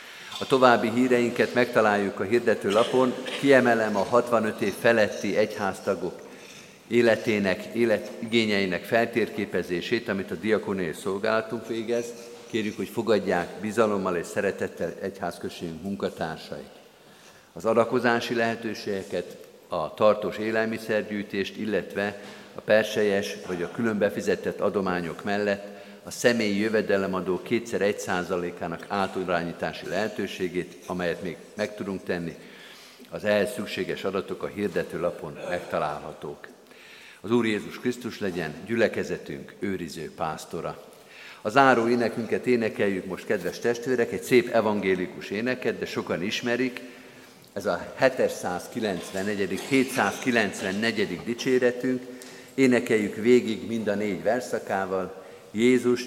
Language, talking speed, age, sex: Hungarian, 105 wpm, 50-69, male